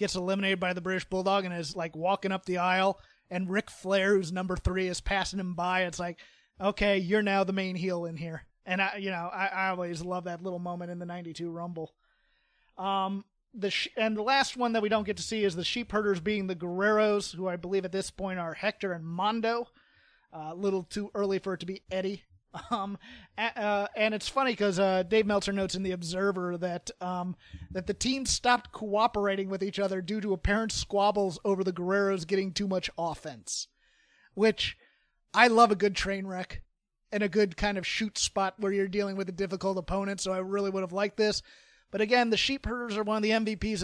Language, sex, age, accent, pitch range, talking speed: English, male, 30-49, American, 185-210 Hz, 220 wpm